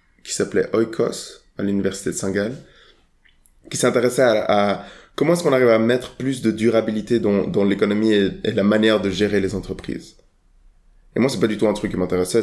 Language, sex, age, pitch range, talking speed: French, male, 20-39, 100-125 Hz, 200 wpm